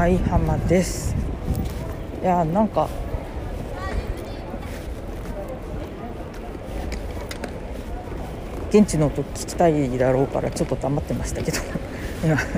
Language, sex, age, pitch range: Japanese, female, 40-59, 105-165 Hz